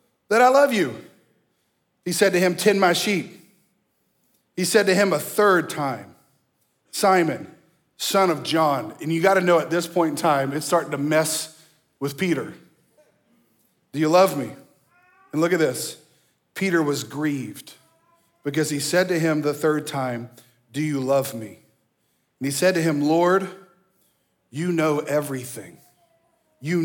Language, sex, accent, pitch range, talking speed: English, male, American, 150-195 Hz, 155 wpm